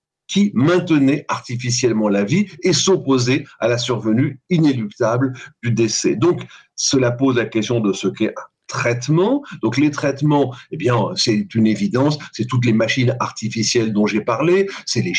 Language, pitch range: French, 120-180 Hz